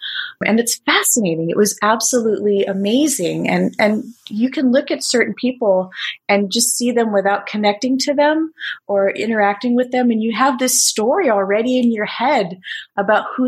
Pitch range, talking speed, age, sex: 200-250 Hz, 170 wpm, 30-49, female